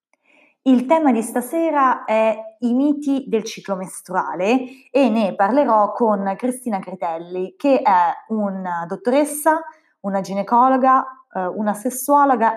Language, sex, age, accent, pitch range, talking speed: Italian, female, 20-39, native, 185-245 Hz, 115 wpm